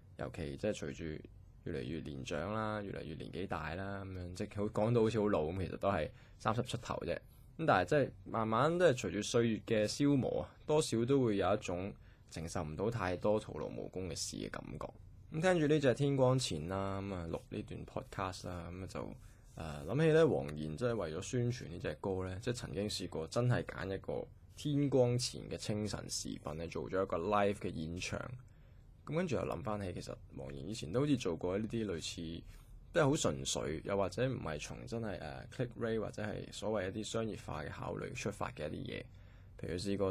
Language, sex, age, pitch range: Chinese, male, 20-39, 90-120 Hz